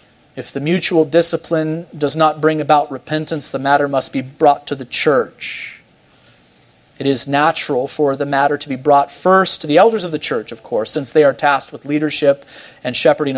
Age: 40-59